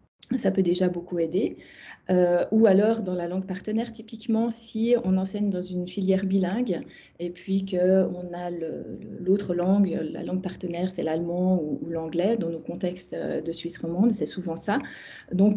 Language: French